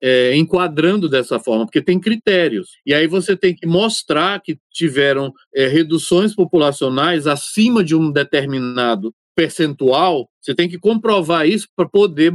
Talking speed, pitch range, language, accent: 135 wpm, 145-185 Hz, Portuguese, Brazilian